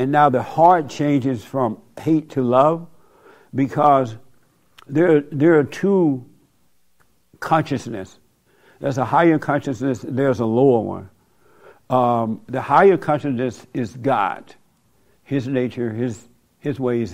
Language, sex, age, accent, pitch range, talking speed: English, male, 60-79, American, 120-150 Hz, 120 wpm